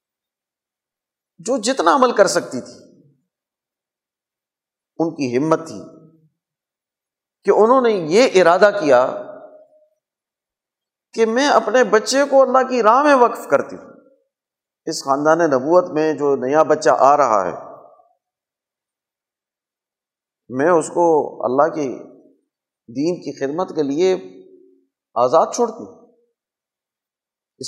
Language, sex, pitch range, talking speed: Urdu, male, 165-275 Hz, 115 wpm